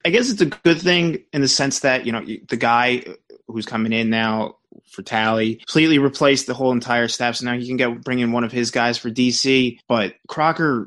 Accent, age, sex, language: American, 20-39, male, English